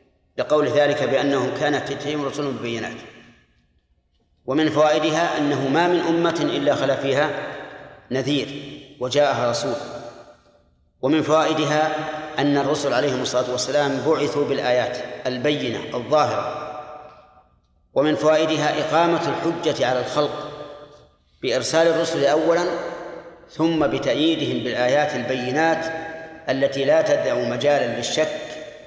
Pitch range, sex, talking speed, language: 130-155 Hz, male, 100 wpm, Arabic